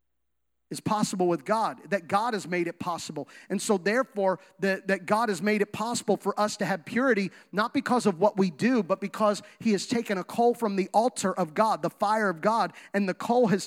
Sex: male